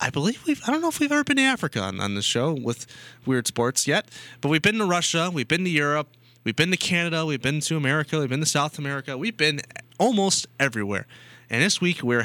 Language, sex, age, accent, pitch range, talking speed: English, male, 20-39, American, 120-175 Hz, 245 wpm